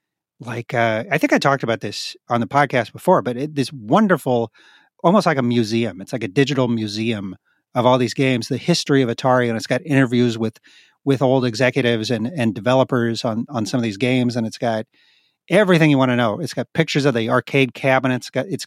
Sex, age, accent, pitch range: male, 40-59, American, 120-155 Hz